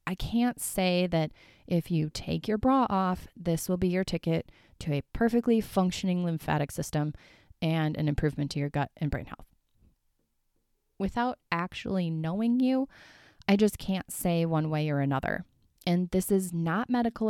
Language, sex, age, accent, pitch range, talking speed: English, female, 30-49, American, 155-195 Hz, 165 wpm